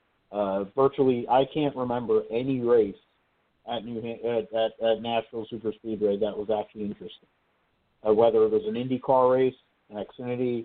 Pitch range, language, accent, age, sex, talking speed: 110-125 Hz, English, American, 50-69, male, 165 wpm